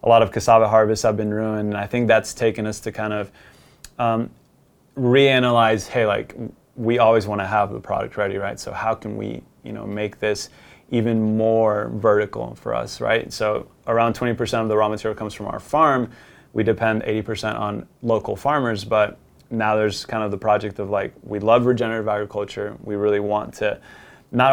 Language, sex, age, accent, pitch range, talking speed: English, male, 20-39, American, 105-115 Hz, 195 wpm